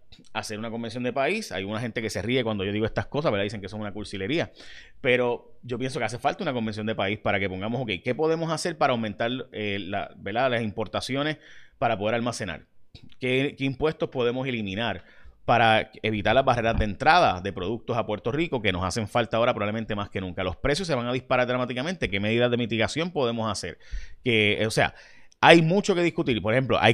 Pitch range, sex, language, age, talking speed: 110-135 Hz, male, Spanish, 30-49, 215 wpm